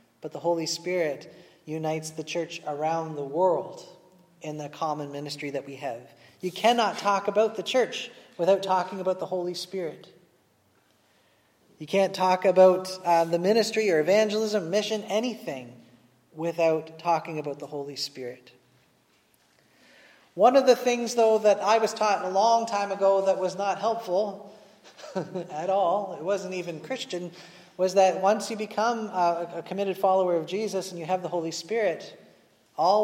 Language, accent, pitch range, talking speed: English, American, 175-210 Hz, 155 wpm